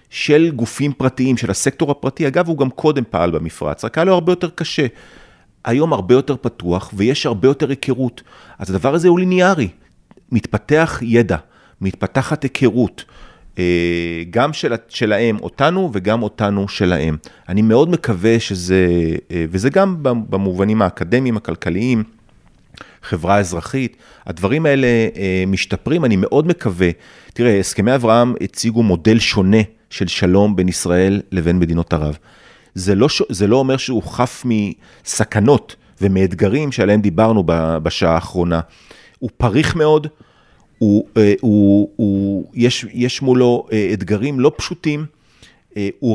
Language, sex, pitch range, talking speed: Hebrew, male, 95-135 Hz, 125 wpm